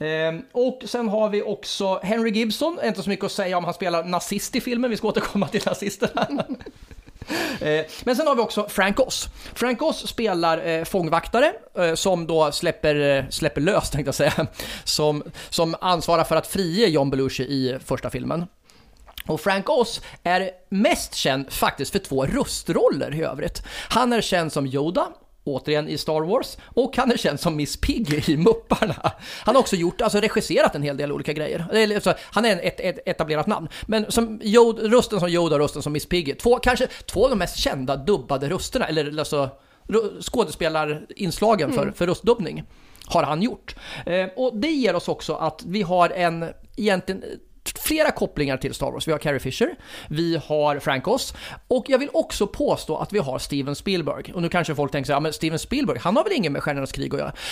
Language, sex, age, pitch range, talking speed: Swedish, male, 30-49, 150-215 Hz, 190 wpm